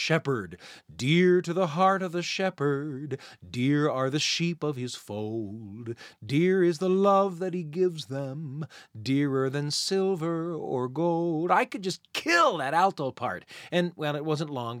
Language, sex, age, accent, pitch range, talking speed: English, male, 30-49, American, 120-170 Hz, 160 wpm